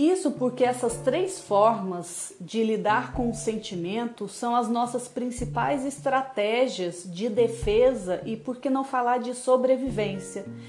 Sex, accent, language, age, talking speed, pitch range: female, Brazilian, Portuguese, 40-59, 135 wpm, 215-265 Hz